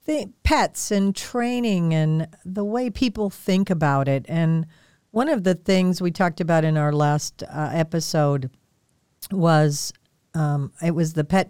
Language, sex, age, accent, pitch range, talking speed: English, female, 50-69, American, 150-190 Hz, 155 wpm